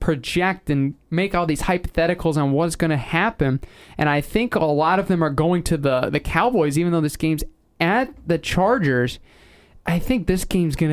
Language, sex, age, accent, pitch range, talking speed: English, male, 20-39, American, 140-175 Hz, 200 wpm